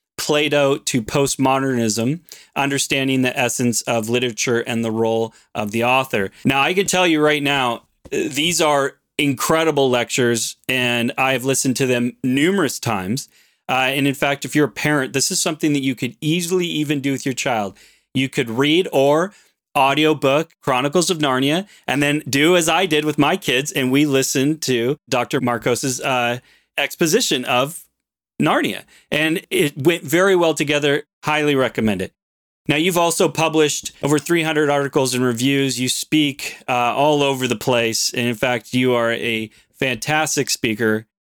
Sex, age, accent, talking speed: male, 30-49, American, 165 wpm